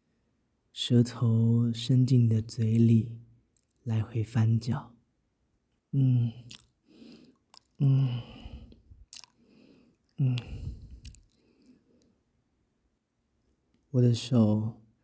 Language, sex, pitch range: Chinese, male, 110-120 Hz